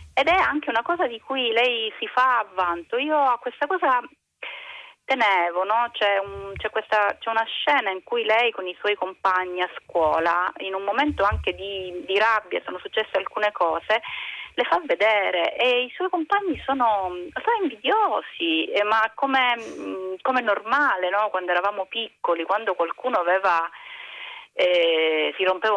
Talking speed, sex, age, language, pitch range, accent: 160 wpm, female, 30-49, Italian, 185-290 Hz, native